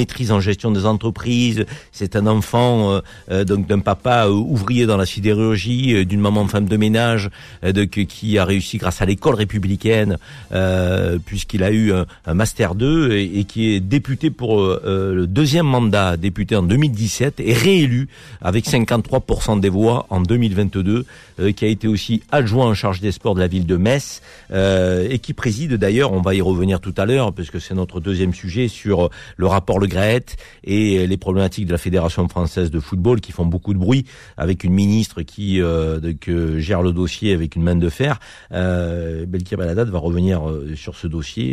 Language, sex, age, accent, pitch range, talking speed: French, male, 50-69, French, 90-110 Hz, 190 wpm